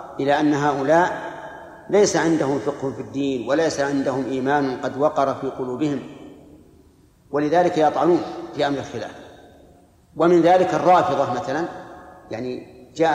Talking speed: 120 wpm